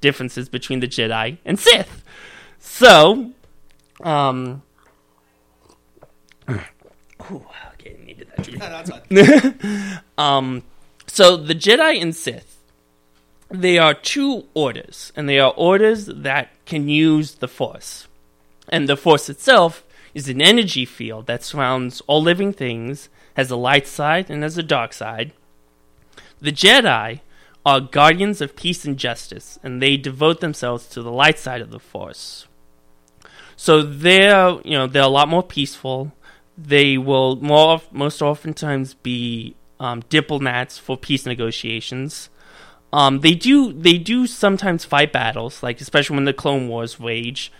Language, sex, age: English, male, 20-39